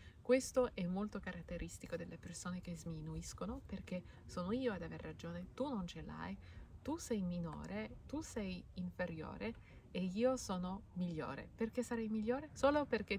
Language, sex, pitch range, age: Italian, female, 175-240 Hz, 30-49